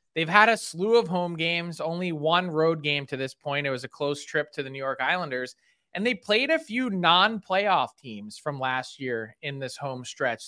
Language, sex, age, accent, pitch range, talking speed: English, male, 20-39, American, 145-185 Hz, 220 wpm